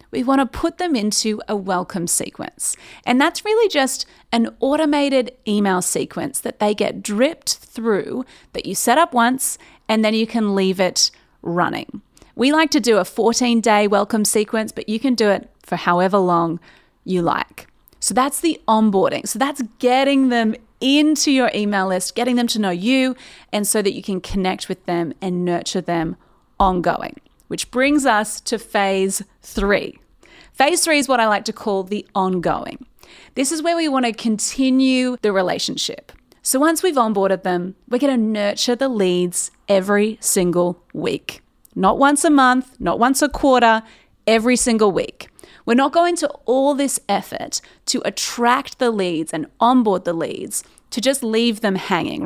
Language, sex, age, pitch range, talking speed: English, female, 30-49, 200-260 Hz, 170 wpm